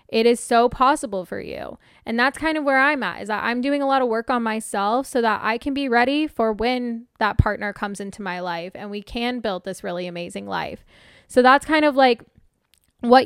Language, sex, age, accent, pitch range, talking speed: English, female, 10-29, American, 210-255 Hz, 230 wpm